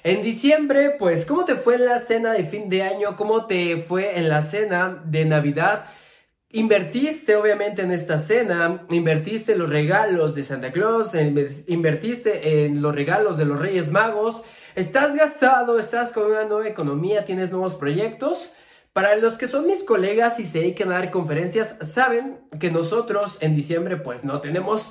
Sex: male